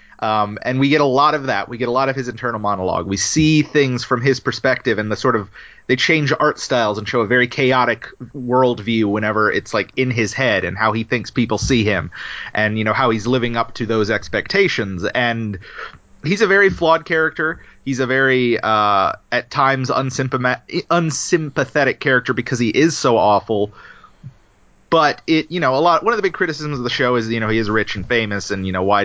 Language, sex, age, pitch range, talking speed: English, male, 30-49, 110-135 Hz, 215 wpm